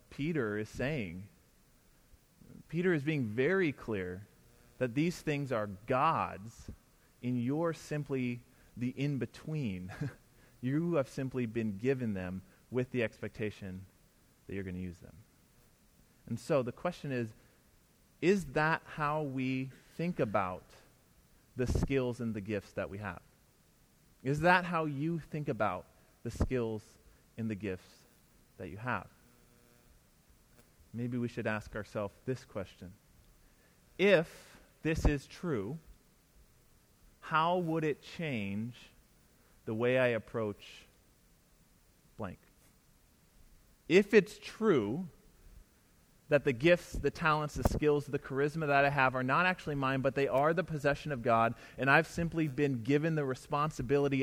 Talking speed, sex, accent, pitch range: 130 wpm, male, American, 115-155 Hz